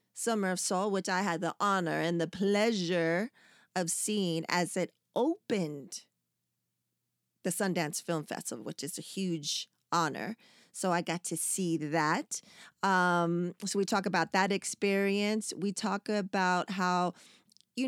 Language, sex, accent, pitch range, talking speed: English, female, American, 175-215 Hz, 145 wpm